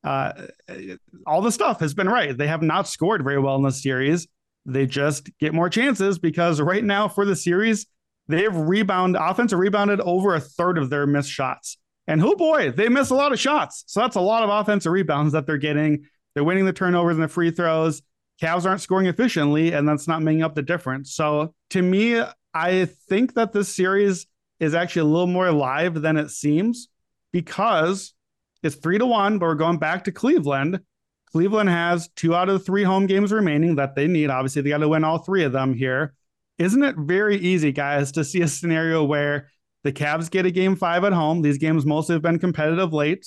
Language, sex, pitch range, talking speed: English, male, 150-185 Hz, 210 wpm